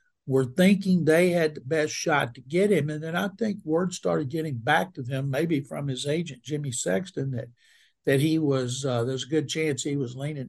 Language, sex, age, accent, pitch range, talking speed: English, male, 60-79, American, 140-175 Hz, 215 wpm